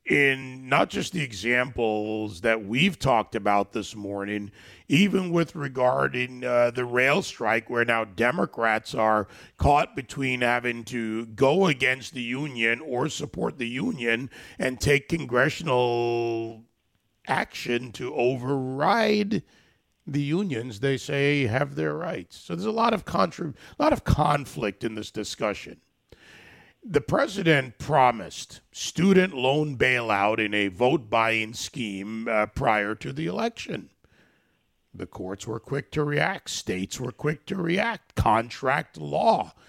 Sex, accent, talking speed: male, American, 130 wpm